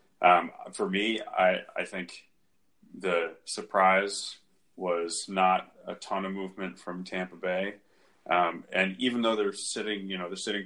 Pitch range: 85-100 Hz